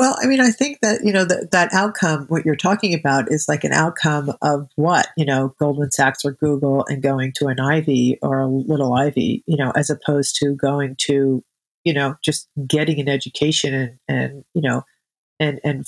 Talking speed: 210 wpm